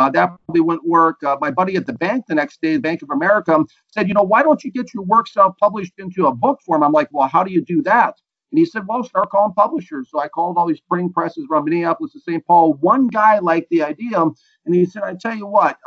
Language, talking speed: English, 265 wpm